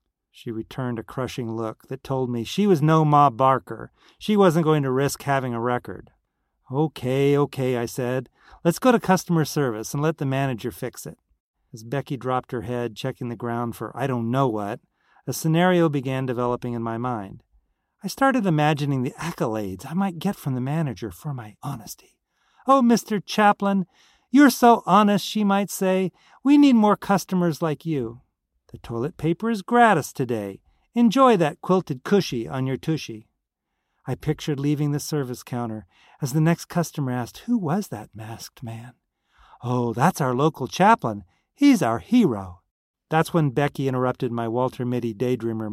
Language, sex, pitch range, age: English, male, 125-185 Hz, 40-59